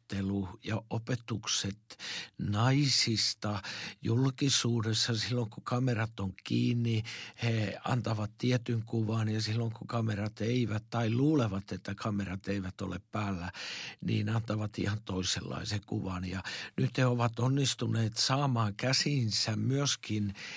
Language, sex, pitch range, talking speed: Finnish, male, 110-135 Hz, 110 wpm